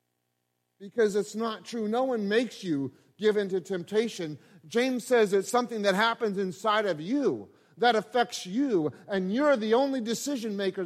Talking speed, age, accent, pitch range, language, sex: 160 wpm, 30-49, American, 185-235 Hz, English, male